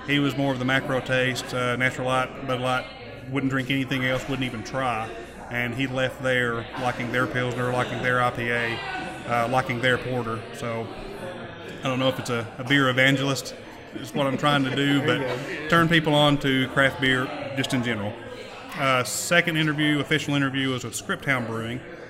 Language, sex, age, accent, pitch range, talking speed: English, male, 30-49, American, 120-135 Hz, 190 wpm